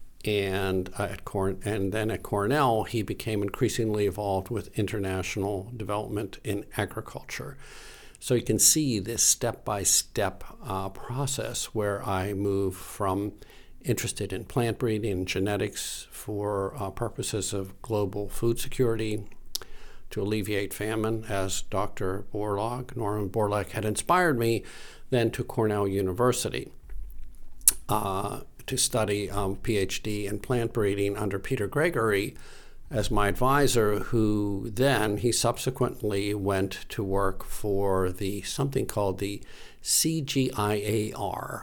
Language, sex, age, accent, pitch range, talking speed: English, male, 50-69, American, 100-115 Hz, 120 wpm